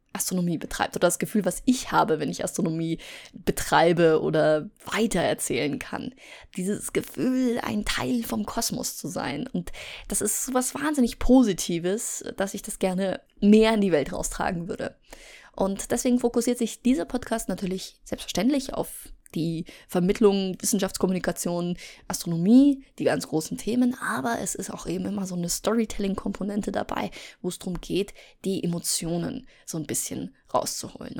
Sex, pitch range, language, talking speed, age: female, 175-220 Hz, German, 150 wpm, 20-39